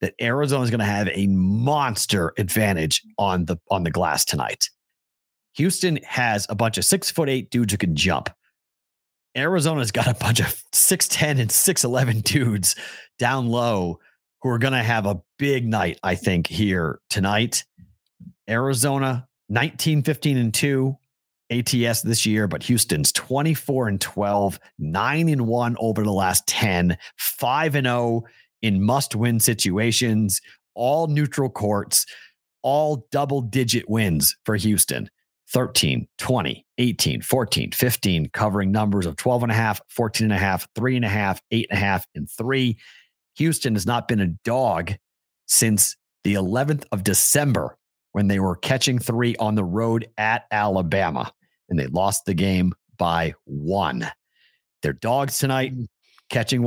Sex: male